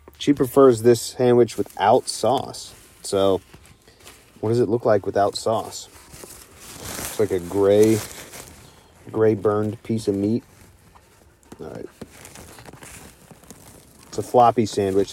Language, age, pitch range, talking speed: English, 40-59, 90-110 Hz, 115 wpm